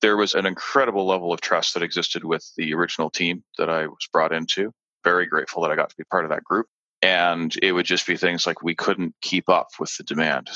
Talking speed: 245 wpm